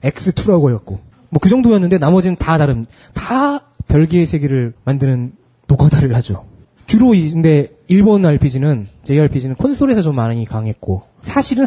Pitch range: 120-185 Hz